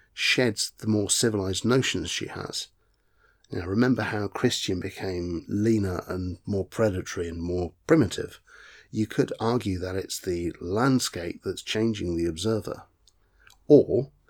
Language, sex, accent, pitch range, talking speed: English, male, British, 90-115 Hz, 130 wpm